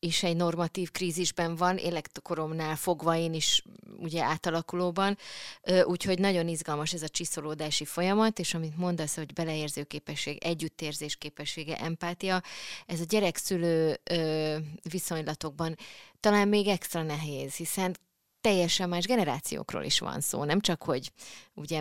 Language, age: Hungarian, 20-39